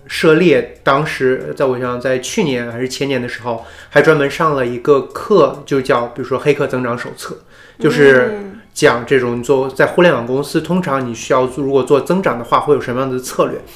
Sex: male